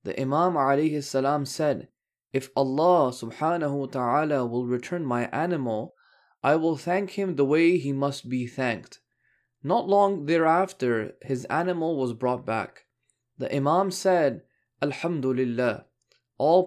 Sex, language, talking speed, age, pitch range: male, English, 135 wpm, 20-39, 135-180 Hz